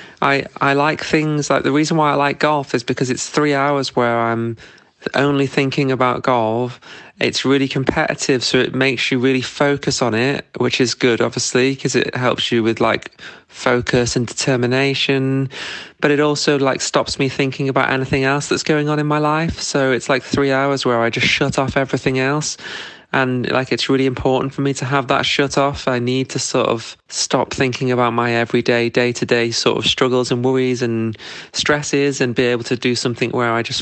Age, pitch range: 20-39, 125-145 Hz